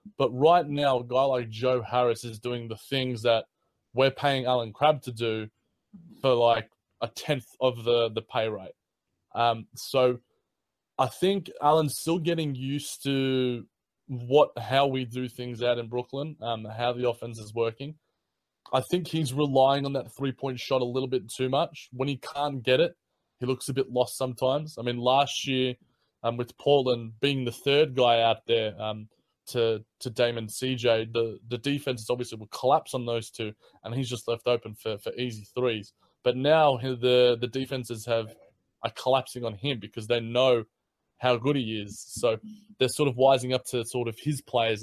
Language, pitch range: English, 115-140 Hz